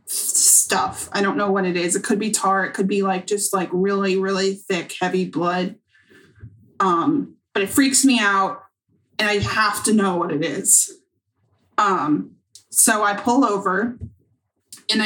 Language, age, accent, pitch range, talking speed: English, 20-39, American, 190-225 Hz, 165 wpm